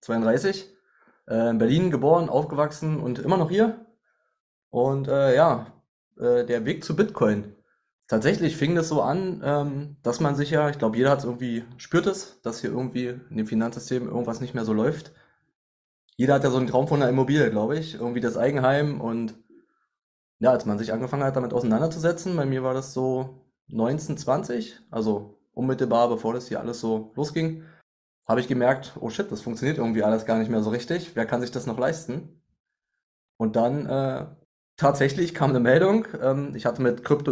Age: 20-39